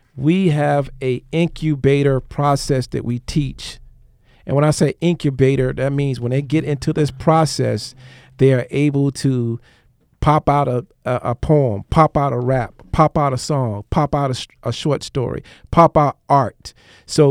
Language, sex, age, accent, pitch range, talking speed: English, male, 50-69, American, 130-155 Hz, 165 wpm